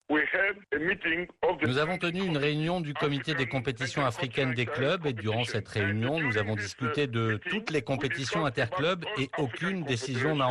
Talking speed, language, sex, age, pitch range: 160 wpm, Arabic, male, 50-69, 115-145 Hz